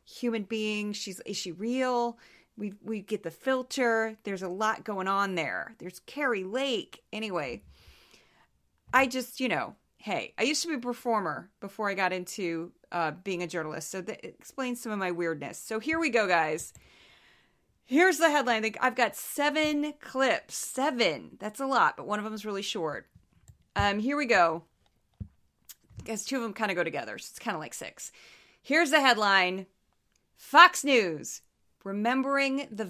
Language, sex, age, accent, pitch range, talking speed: English, female, 30-49, American, 190-255 Hz, 180 wpm